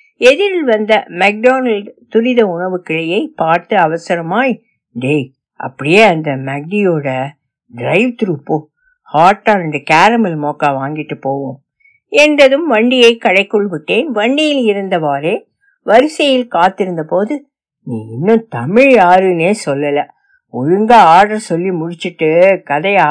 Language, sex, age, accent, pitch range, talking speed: Tamil, female, 60-79, native, 175-265 Hz, 70 wpm